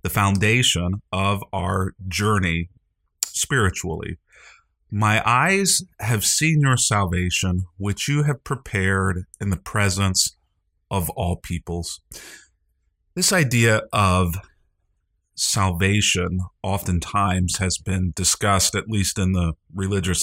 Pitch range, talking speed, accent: 90-105 Hz, 105 wpm, American